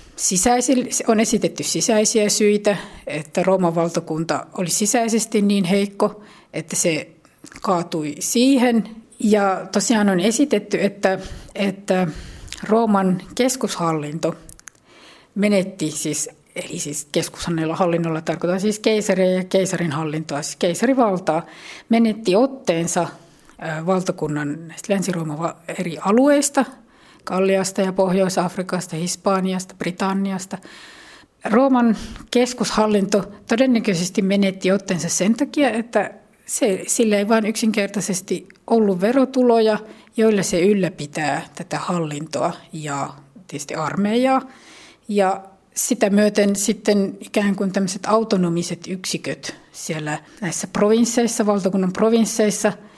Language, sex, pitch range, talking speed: Finnish, female, 175-220 Hz, 95 wpm